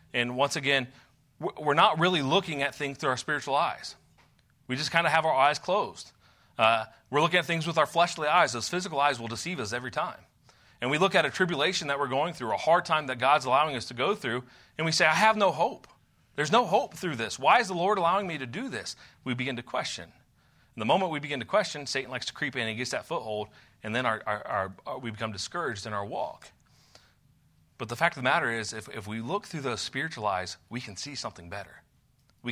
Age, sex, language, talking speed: 30-49, male, English, 245 wpm